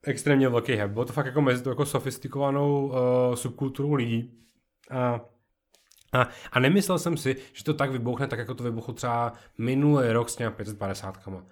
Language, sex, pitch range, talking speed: Czech, male, 115-135 Hz, 165 wpm